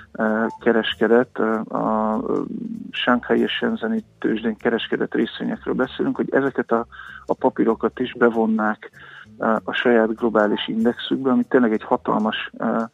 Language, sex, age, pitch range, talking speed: Hungarian, male, 50-69, 115-135 Hz, 115 wpm